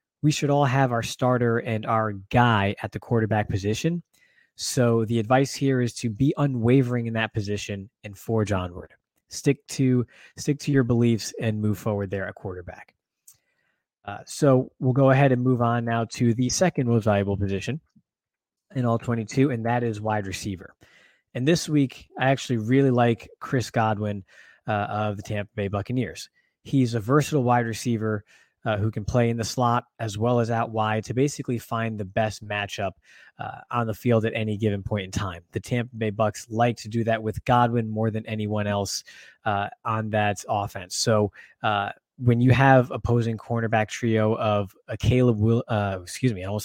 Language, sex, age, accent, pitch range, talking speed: English, male, 20-39, American, 105-125 Hz, 185 wpm